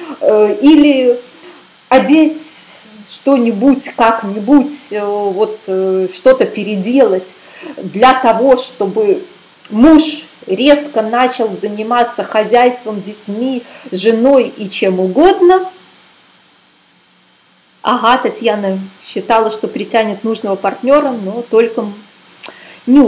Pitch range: 215-285 Hz